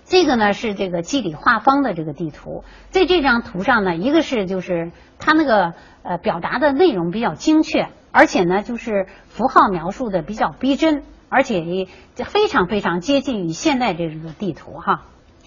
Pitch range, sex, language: 180-280 Hz, female, Chinese